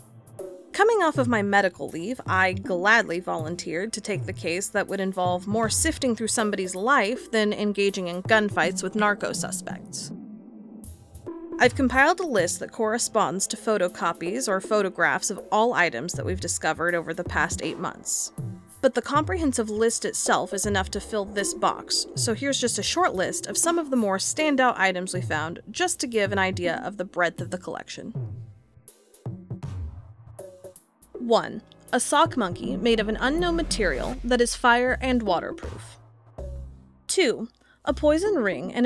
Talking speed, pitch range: 160 wpm, 175-255 Hz